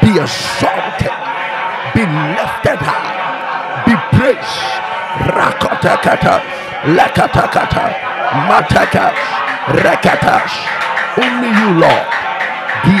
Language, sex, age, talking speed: English, male, 50-69, 70 wpm